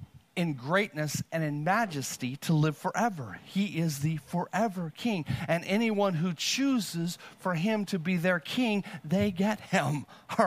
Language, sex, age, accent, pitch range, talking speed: English, male, 40-59, American, 185-250 Hz, 155 wpm